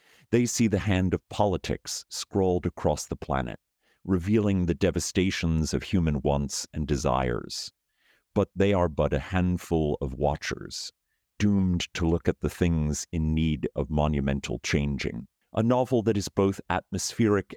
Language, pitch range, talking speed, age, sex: English, 75-95 Hz, 145 wpm, 50-69, male